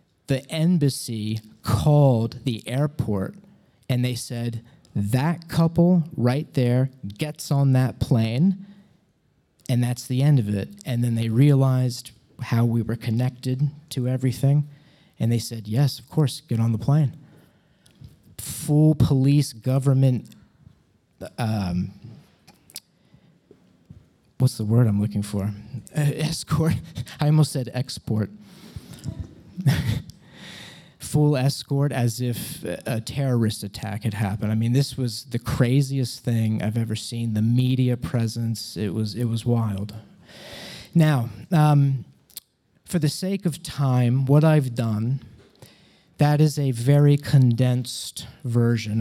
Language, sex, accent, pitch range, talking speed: English, male, American, 115-145 Hz, 125 wpm